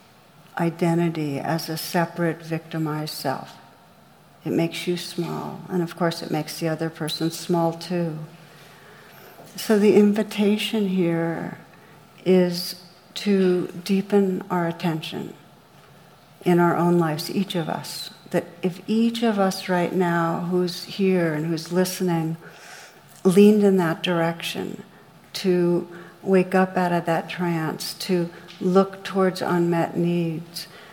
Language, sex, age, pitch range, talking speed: English, female, 60-79, 165-185 Hz, 130 wpm